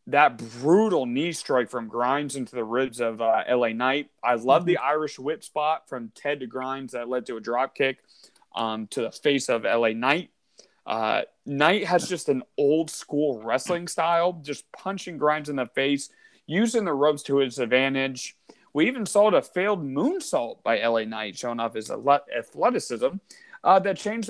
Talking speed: 175 wpm